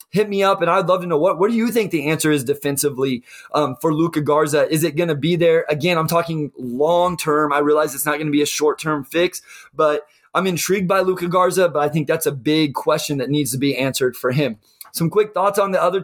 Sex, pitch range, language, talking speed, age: male, 150-180 Hz, English, 245 wpm, 20-39